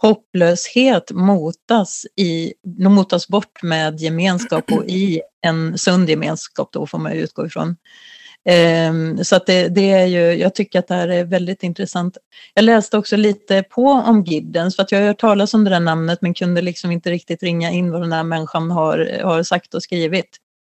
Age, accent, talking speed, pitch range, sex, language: 30-49, native, 180 wpm, 165-200 Hz, female, Swedish